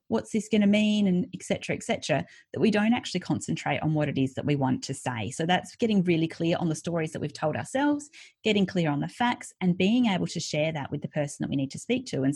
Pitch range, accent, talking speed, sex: 155-215 Hz, Australian, 275 wpm, female